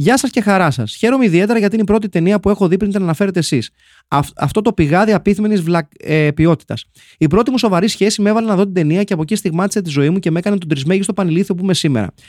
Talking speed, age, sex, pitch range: 255 wpm, 30-49, male, 140-195 Hz